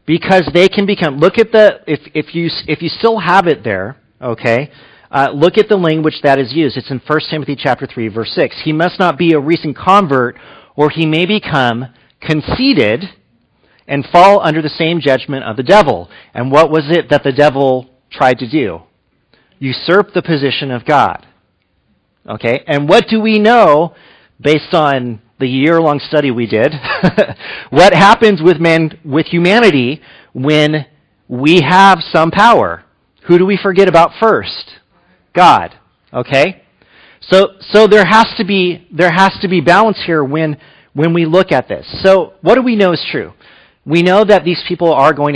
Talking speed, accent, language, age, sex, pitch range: 175 wpm, American, English, 40-59, male, 140-190 Hz